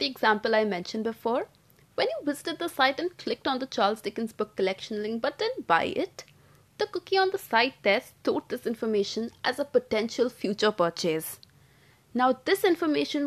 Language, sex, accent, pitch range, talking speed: English, female, Indian, 215-300 Hz, 175 wpm